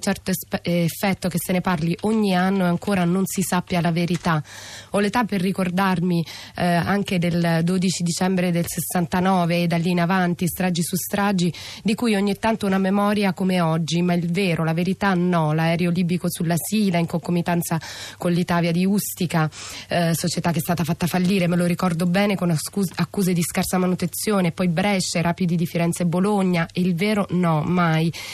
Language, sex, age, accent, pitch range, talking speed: Italian, female, 20-39, native, 170-190 Hz, 180 wpm